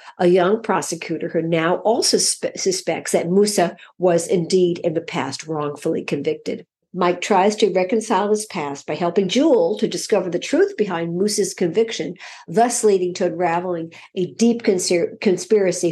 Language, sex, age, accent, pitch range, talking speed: English, female, 50-69, American, 170-210 Hz, 145 wpm